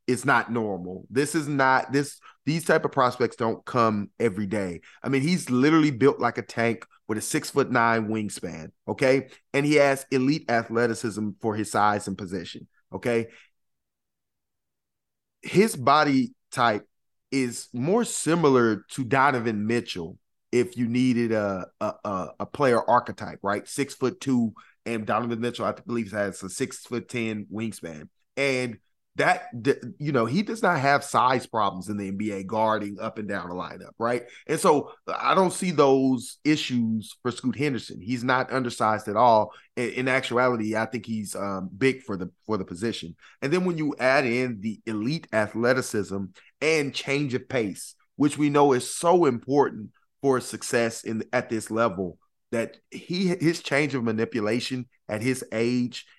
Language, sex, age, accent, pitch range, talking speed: English, male, 30-49, American, 110-135 Hz, 165 wpm